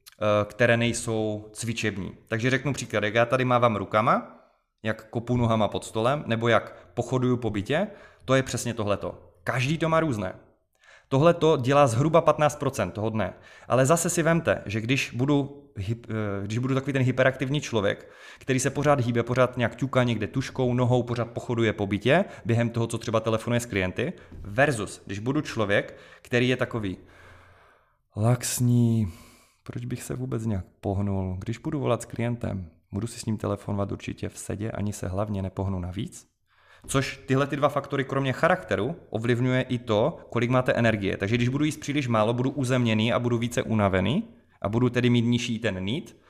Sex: male